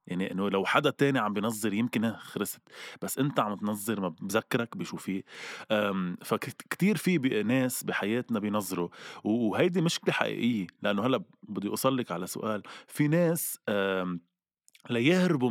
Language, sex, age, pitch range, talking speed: Arabic, male, 20-39, 95-130 Hz, 130 wpm